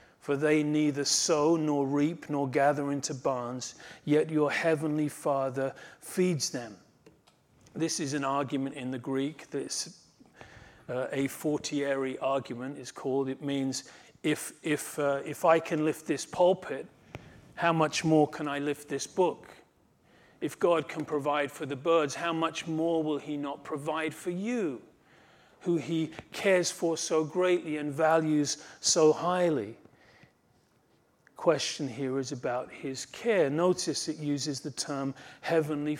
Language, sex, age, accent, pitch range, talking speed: English, male, 40-59, British, 145-180 Hz, 145 wpm